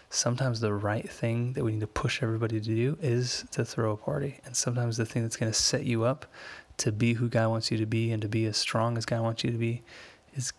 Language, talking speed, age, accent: English, 265 wpm, 10-29, American